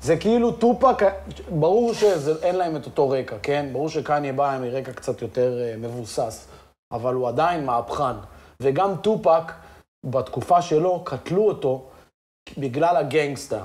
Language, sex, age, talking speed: Hebrew, male, 30-49, 125 wpm